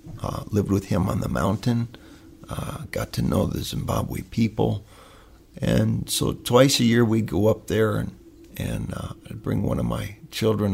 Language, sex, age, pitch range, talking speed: English, male, 50-69, 95-115 Hz, 180 wpm